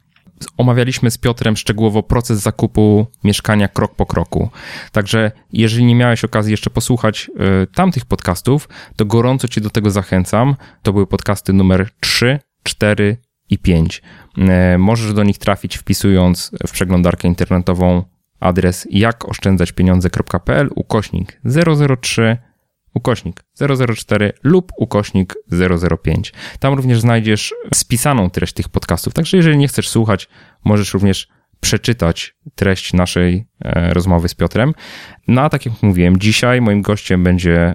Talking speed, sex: 130 wpm, male